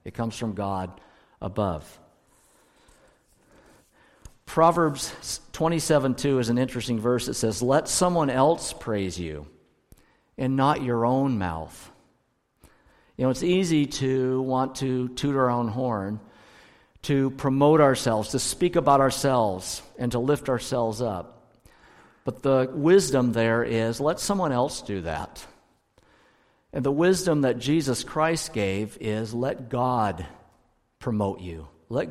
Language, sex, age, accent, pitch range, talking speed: English, male, 50-69, American, 110-135 Hz, 130 wpm